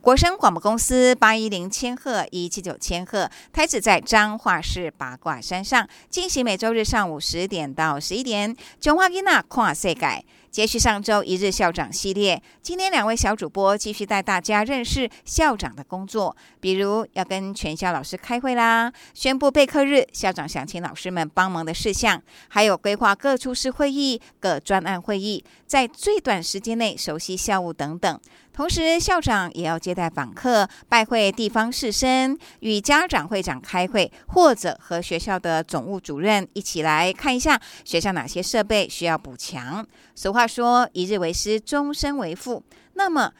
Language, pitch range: Chinese, 180-250 Hz